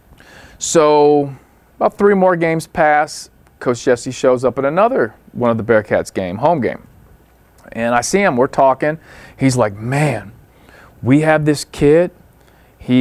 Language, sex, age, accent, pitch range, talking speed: English, male, 40-59, American, 105-145 Hz, 150 wpm